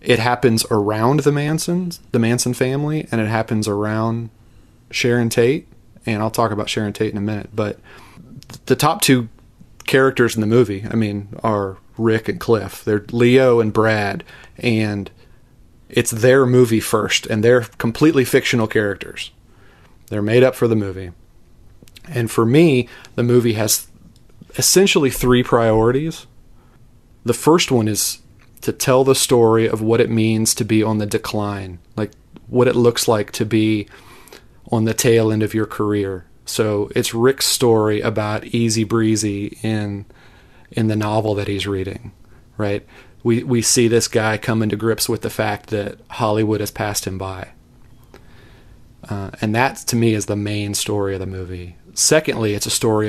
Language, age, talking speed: English, 30-49, 165 wpm